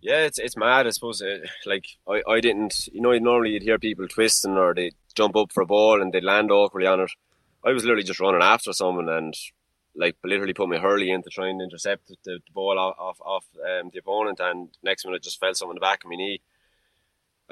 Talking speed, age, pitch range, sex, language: 235 wpm, 20-39, 95-110 Hz, male, English